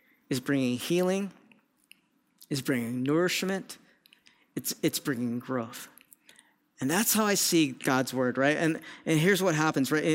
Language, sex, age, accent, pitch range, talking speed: English, male, 40-59, American, 130-175 Hz, 140 wpm